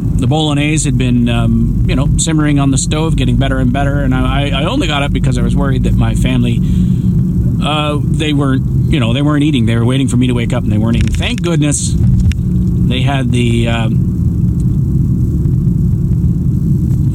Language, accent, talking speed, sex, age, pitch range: English, American, 190 wpm, male, 40-59, 115-145 Hz